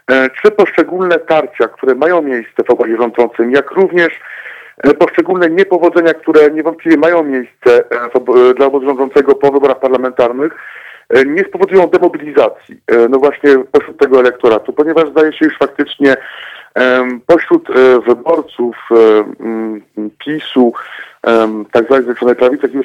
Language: Polish